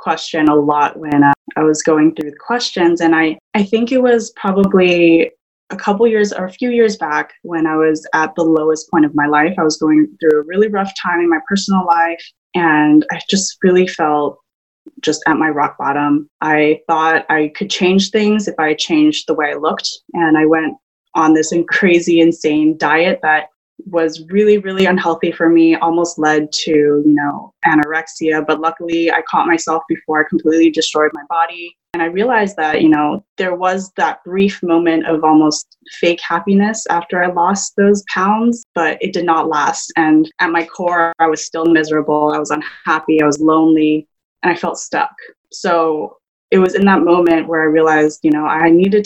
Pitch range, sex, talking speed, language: 155-185 Hz, female, 195 wpm, English